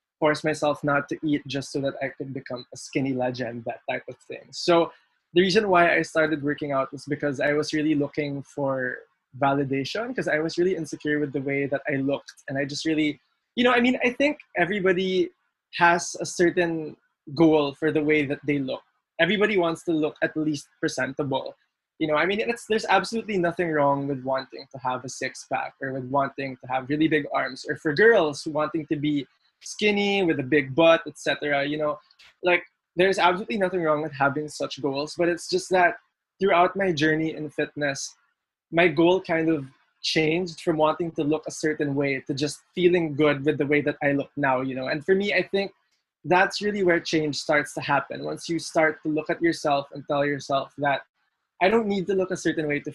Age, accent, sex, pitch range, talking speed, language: 20-39, Filipino, male, 145-175 Hz, 210 wpm, English